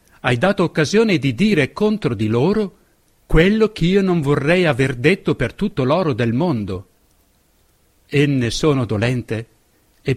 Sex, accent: male, native